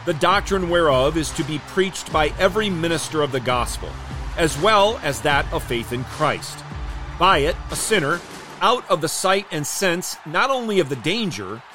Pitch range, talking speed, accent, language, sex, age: 130-175 Hz, 185 wpm, American, English, male, 40-59